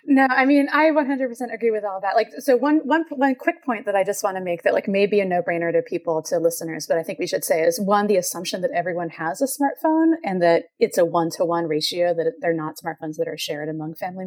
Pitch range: 175-265 Hz